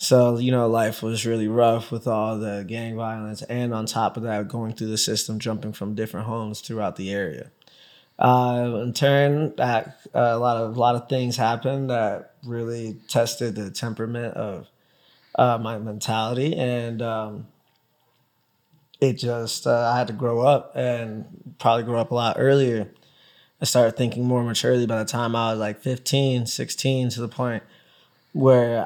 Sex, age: male, 20-39